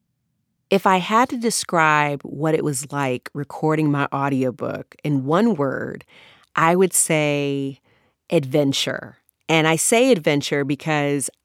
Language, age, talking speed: English, 30-49, 125 wpm